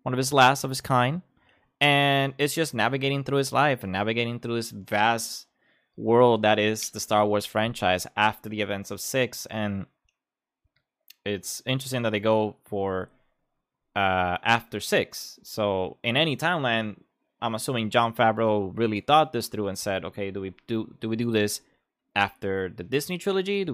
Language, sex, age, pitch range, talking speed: English, male, 20-39, 105-130 Hz, 170 wpm